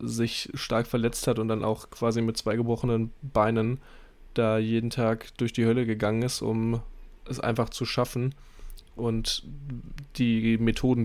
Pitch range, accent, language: 110-125 Hz, German, German